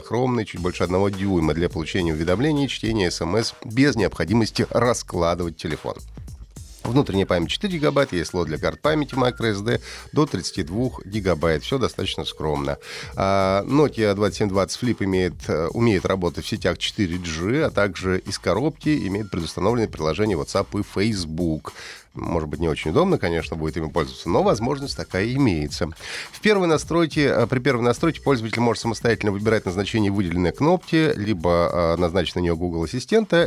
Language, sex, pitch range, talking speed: Russian, male, 90-125 Hz, 145 wpm